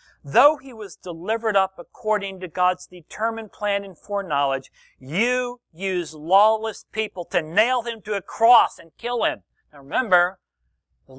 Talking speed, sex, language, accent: 150 wpm, male, English, American